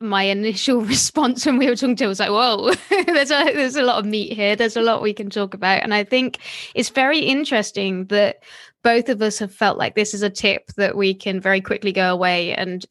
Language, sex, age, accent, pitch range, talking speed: English, female, 20-39, British, 195-245 Hz, 235 wpm